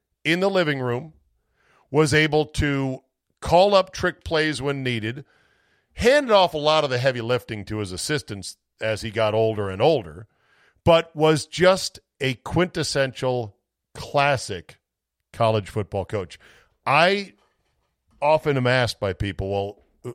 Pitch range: 105-145 Hz